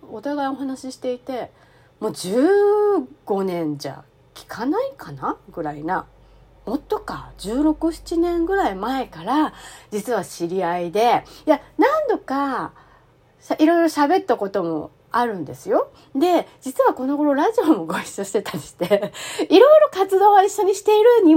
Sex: female